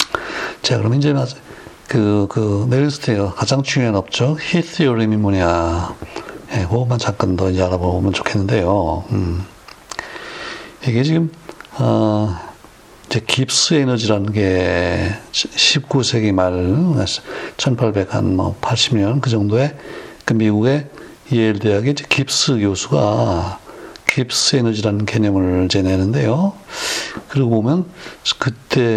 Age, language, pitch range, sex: 60-79, Korean, 100-135 Hz, male